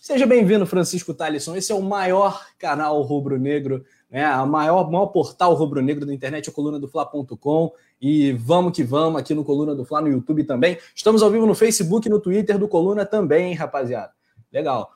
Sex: male